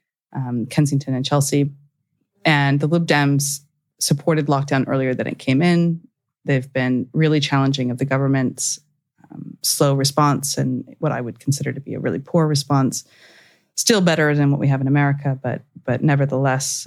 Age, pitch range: 30-49, 140-155 Hz